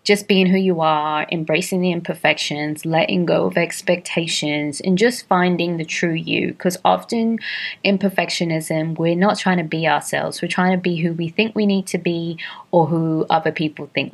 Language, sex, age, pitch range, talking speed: English, female, 20-39, 155-190 Hz, 185 wpm